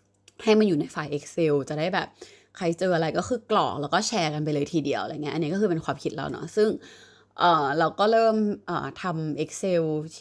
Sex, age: female, 20-39